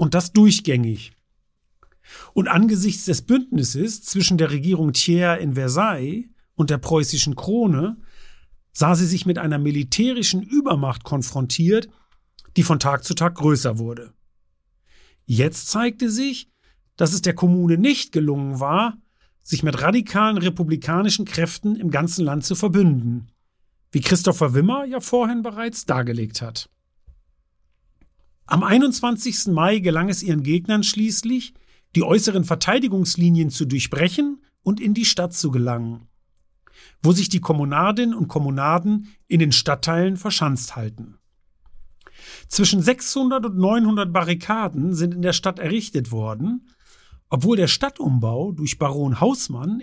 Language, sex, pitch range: German, male, 135-210 Hz